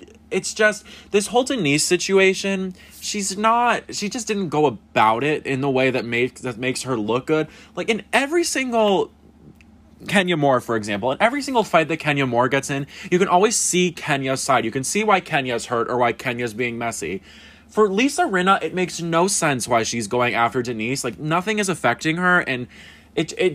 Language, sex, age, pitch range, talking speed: English, male, 20-39, 125-180 Hz, 200 wpm